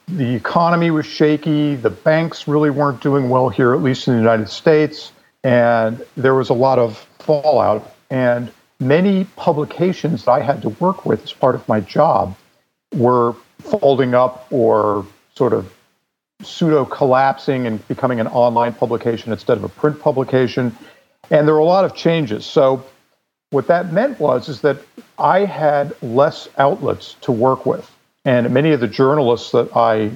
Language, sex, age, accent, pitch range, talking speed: English, male, 50-69, American, 115-150 Hz, 165 wpm